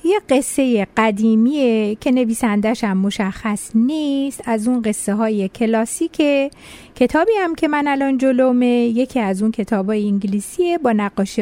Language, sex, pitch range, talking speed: Persian, female, 220-310 Hz, 130 wpm